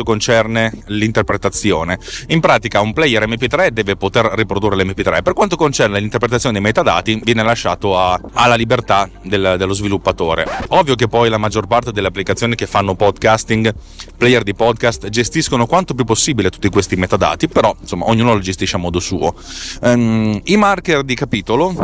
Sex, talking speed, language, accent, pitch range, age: male, 165 wpm, Italian, native, 100-130 Hz, 30-49